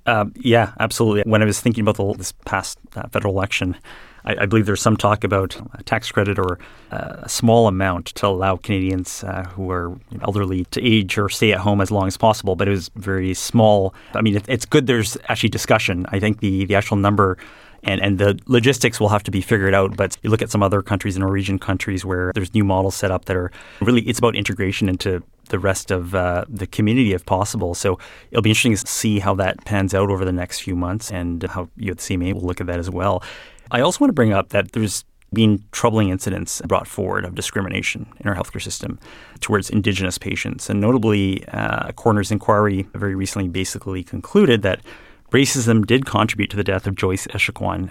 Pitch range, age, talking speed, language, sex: 95-110 Hz, 30-49, 215 wpm, English, male